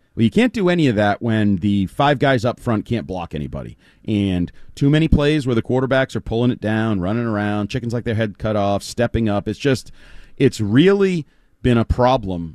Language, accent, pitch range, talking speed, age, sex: English, American, 110-145 Hz, 210 wpm, 30-49, male